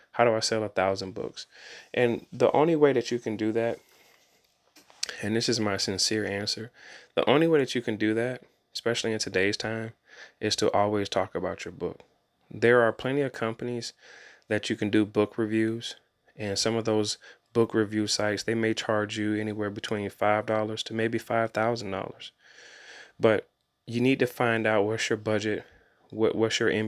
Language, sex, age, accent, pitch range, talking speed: English, male, 20-39, American, 105-115 Hz, 190 wpm